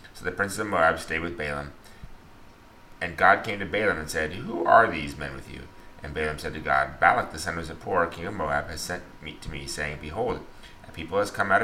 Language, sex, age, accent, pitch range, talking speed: English, male, 30-49, American, 75-95 Hz, 235 wpm